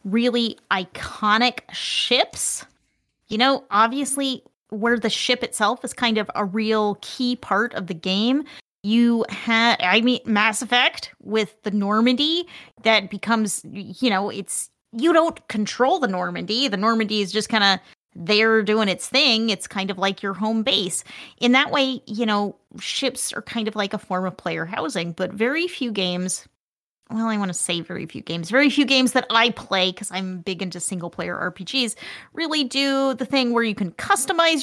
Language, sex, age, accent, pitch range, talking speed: English, female, 30-49, American, 200-270 Hz, 180 wpm